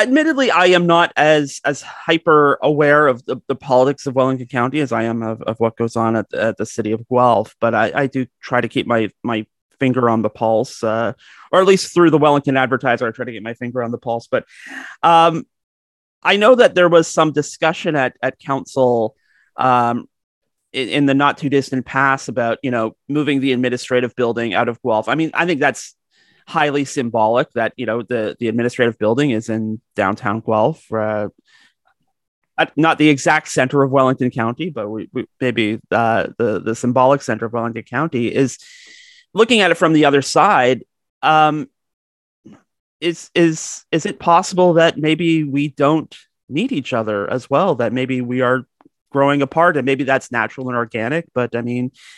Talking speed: 185 wpm